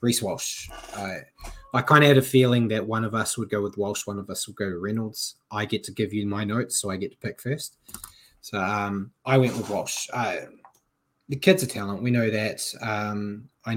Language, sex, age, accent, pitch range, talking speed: English, male, 20-39, Australian, 105-125 Hz, 235 wpm